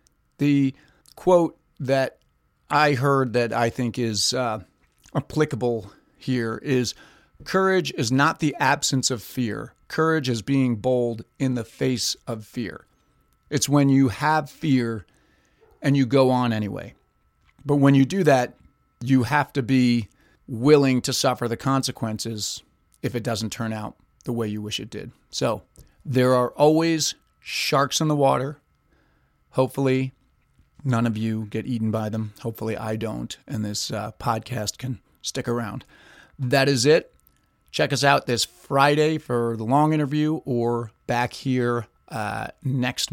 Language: English